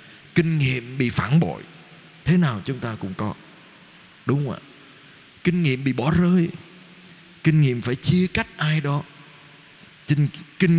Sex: male